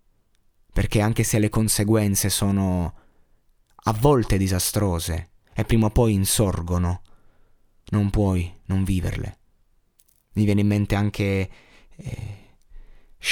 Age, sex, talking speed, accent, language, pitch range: 20-39, male, 110 wpm, native, Italian, 90-110 Hz